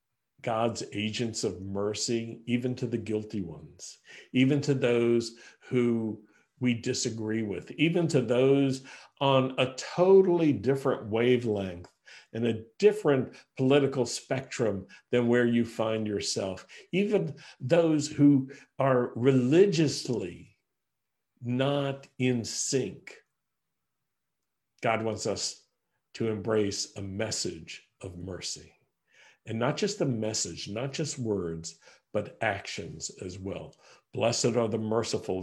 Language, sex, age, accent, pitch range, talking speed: English, male, 50-69, American, 105-130 Hz, 115 wpm